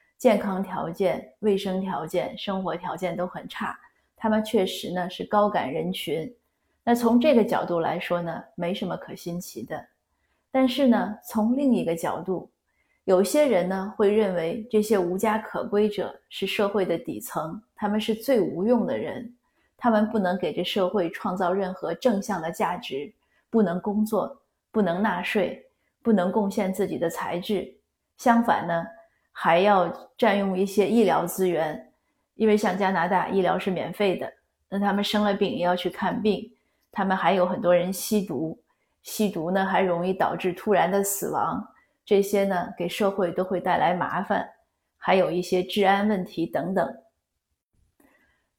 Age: 30-49